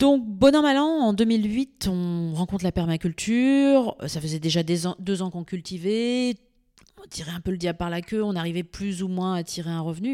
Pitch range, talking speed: 165-220 Hz, 225 wpm